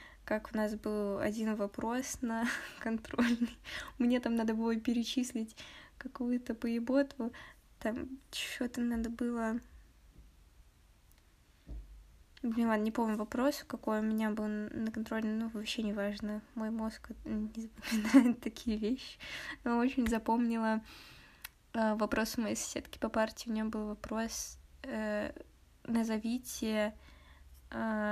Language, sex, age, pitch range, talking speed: Russian, female, 10-29, 210-240 Hz, 120 wpm